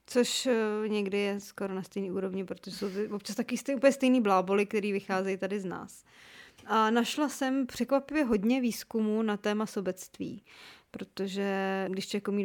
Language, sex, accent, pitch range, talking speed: Czech, female, native, 195-225 Hz, 155 wpm